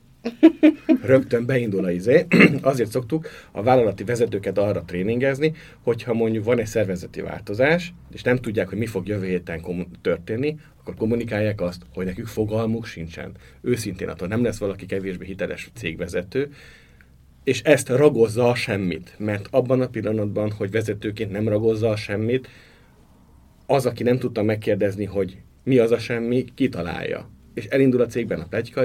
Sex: male